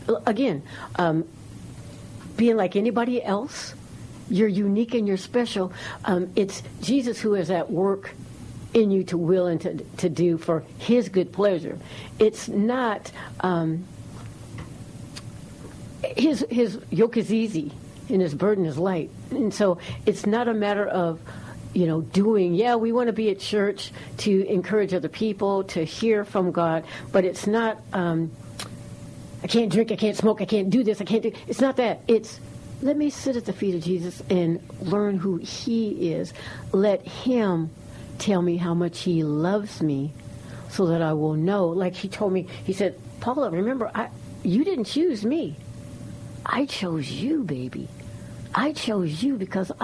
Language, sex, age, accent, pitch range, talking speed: English, female, 60-79, American, 165-225 Hz, 165 wpm